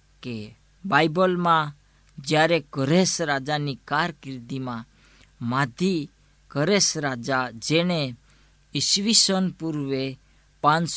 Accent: native